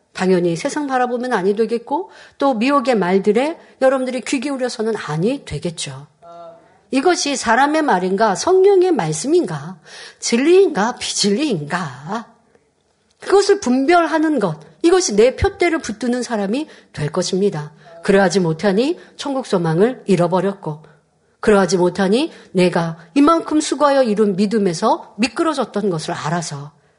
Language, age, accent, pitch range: Korean, 50-69, native, 180-255 Hz